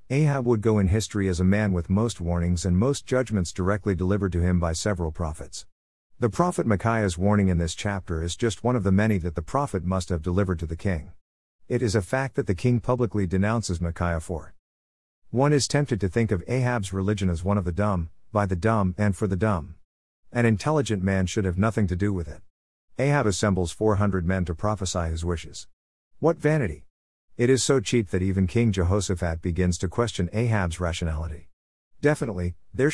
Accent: American